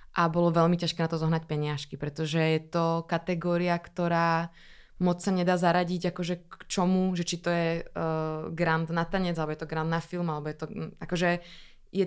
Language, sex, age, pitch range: Czech, female, 20-39, 160-180 Hz